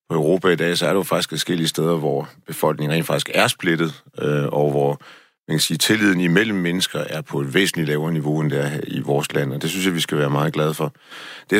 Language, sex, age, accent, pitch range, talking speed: Danish, male, 40-59, native, 80-95 Hz, 250 wpm